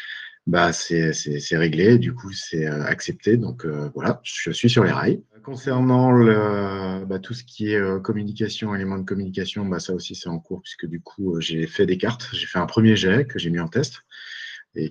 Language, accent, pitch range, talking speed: French, French, 85-110 Hz, 210 wpm